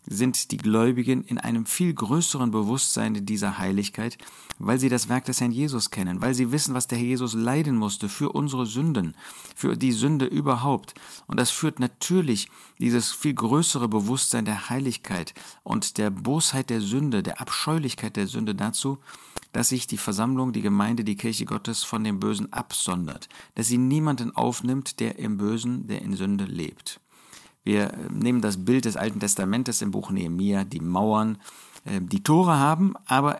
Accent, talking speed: German, 170 wpm